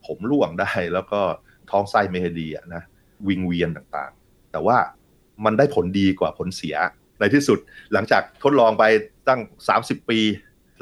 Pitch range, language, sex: 85-110 Hz, Thai, male